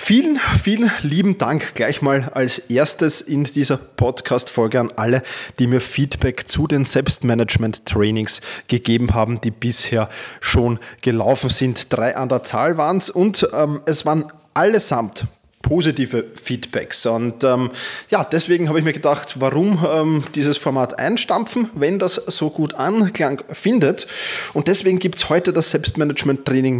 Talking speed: 145 wpm